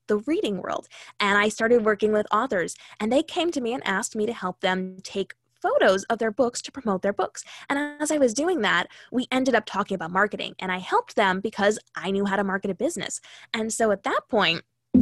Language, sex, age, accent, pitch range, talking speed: English, female, 10-29, American, 195-255 Hz, 230 wpm